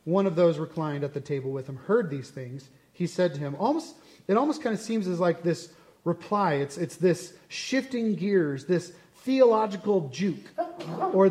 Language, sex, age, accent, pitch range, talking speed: English, male, 30-49, American, 160-210 Hz, 185 wpm